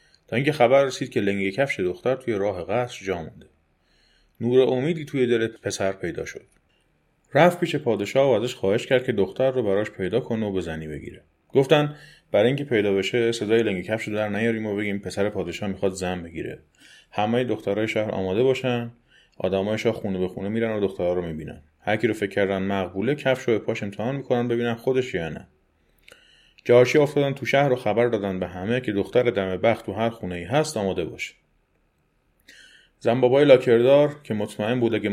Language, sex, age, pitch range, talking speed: Persian, male, 30-49, 95-125 Hz, 180 wpm